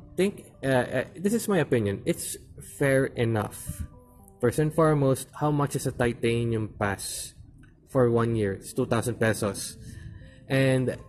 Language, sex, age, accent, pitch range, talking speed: English, male, 20-39, Filipino, 110-145 Hz, 145 wpm